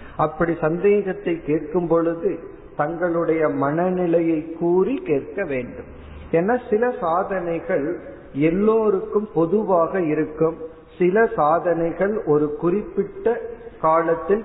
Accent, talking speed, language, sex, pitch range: native, 85 wpm, Tamil, male, 150-185 Hz